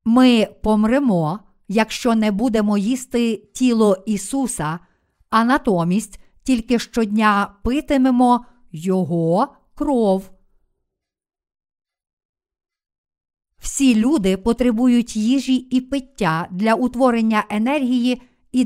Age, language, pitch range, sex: 50-69, Ukrainian, 205-250 Hz, female